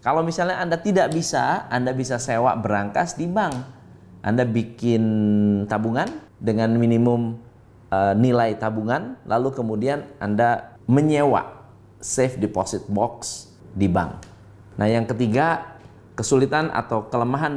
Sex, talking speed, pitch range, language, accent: male, 115 wpm, 105-135 Hz, Indonesian, native